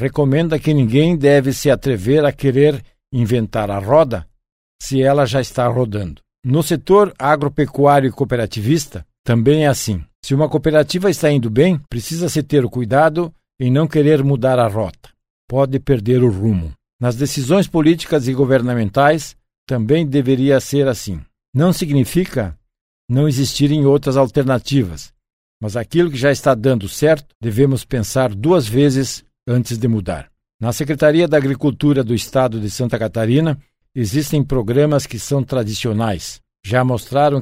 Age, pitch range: 60-79, 115-145 Hz